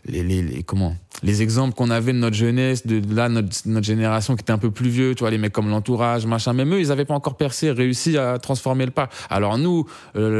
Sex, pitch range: male, 105-135 Hz